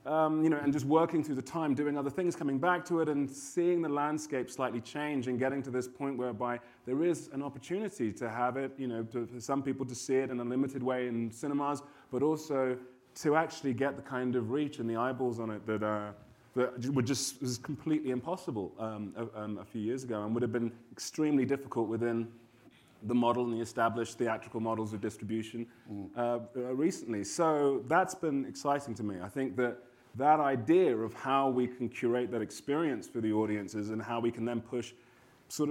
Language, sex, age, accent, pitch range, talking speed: English, male, 30-49, British, 115-140 Hz, 210 wpm